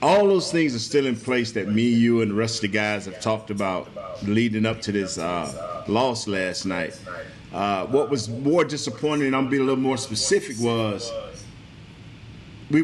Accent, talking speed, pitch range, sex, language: American, 200 wpm, 110-135 Hz, male, English